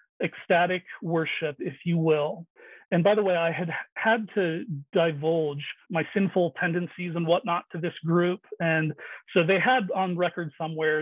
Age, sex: 40-59, male